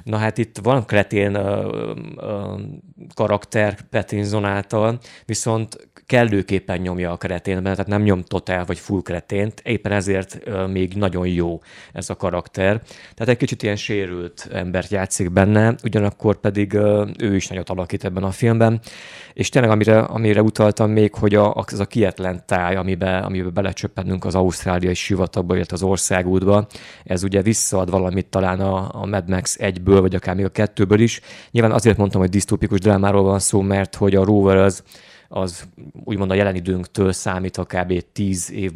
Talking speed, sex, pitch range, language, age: 170 wpm, male, 95-105 Hz, Hungarian, 30-49